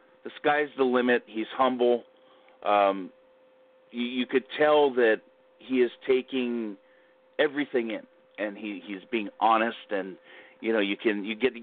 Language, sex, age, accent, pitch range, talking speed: English, male, 40-59, American, 105-135 Hz, 155 wpm